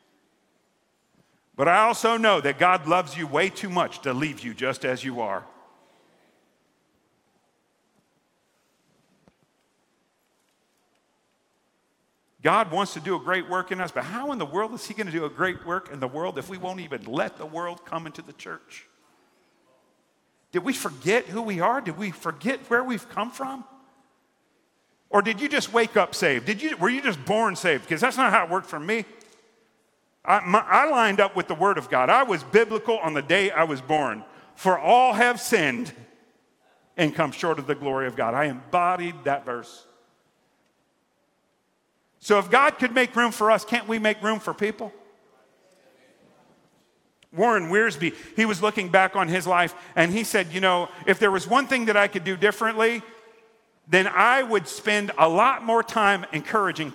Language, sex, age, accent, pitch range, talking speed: English, male, 50-69, American, 170-225 Hz, 180 wpm